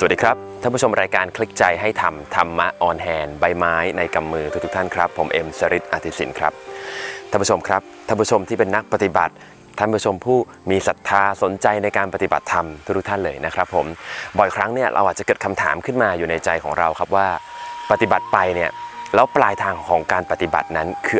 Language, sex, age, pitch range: Thai, male, 20-39, 90-150 Hz